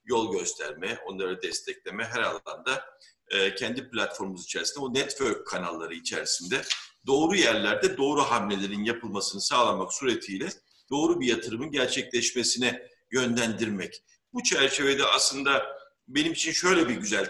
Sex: male